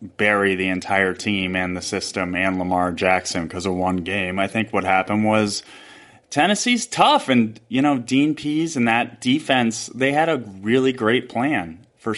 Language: English